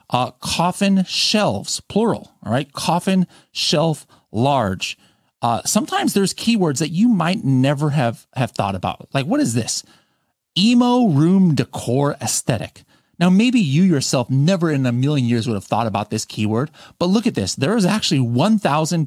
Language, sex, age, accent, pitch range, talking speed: English, male, 30-49, American, 115-170 Hz, 165 wpm